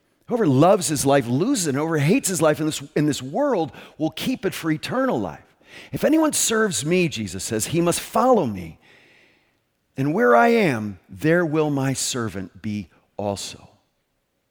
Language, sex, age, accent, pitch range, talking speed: English, male, 40-59, American, 110-170 Hz, 165 wpm